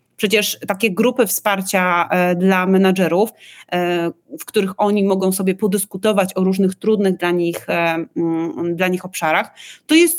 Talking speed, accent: 130 wpm, native